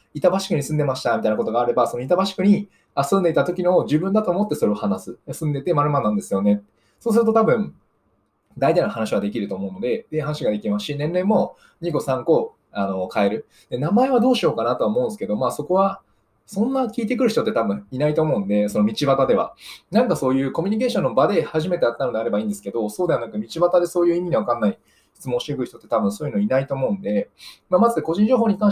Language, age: Japanese, 20-39